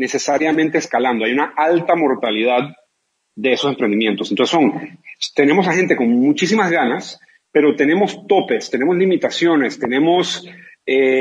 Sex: male